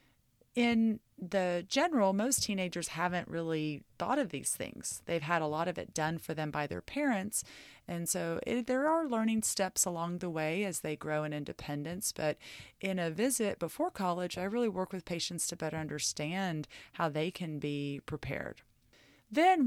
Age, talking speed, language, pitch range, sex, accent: 30-49, 175 wpm, English, 155-210 Hz, female, American